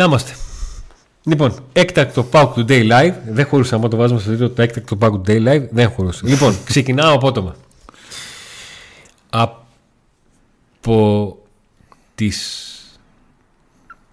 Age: 40-59